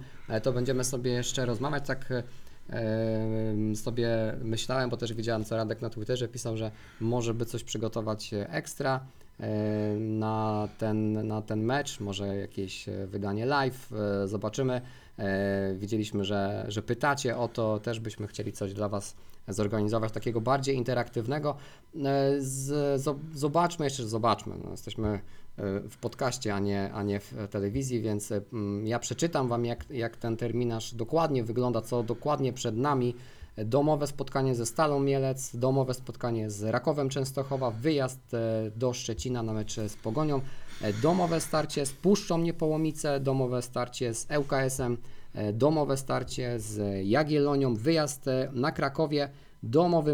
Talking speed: 130 wpm